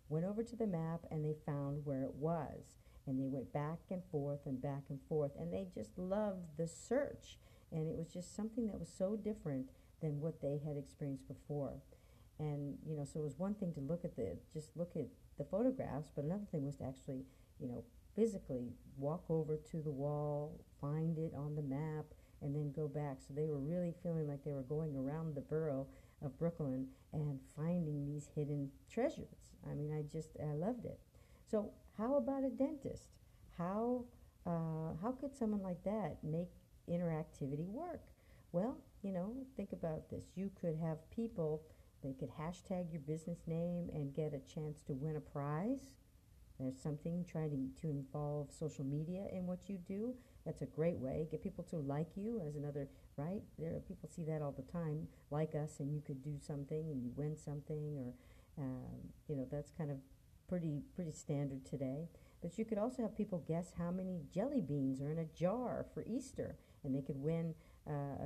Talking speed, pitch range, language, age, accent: 195 wpm, 140-175 Hz, English, 50-69, American